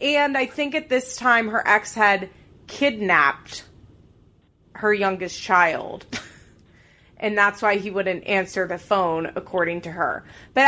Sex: female